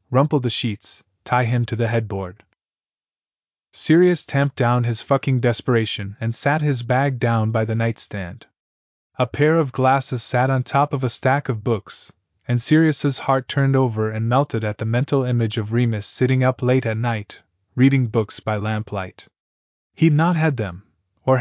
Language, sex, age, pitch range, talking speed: English, male, 20-39, 110-135 Hz, 170 wpm